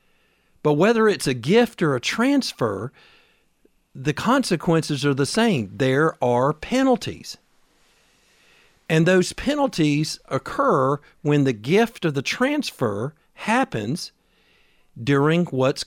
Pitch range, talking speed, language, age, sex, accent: 135-200 Hz, 110 wpm, English, 50-69, male, American